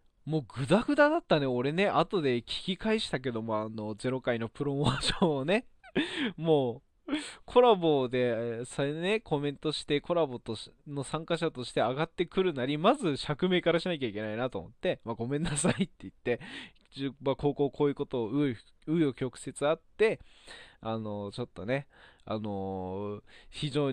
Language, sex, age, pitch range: Japanese, male, 20-39, 120-170 Hz